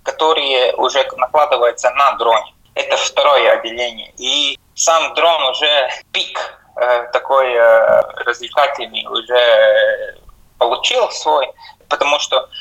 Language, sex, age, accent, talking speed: Russian, male, 20-39, native, 95 wpm